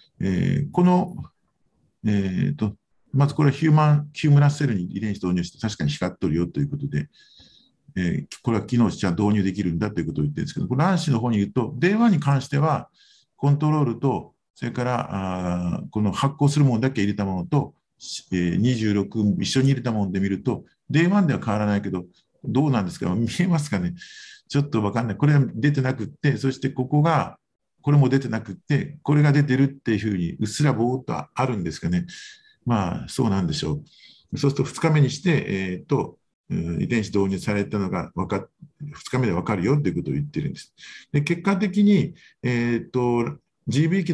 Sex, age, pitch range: male, 50-69, 105-150 Hz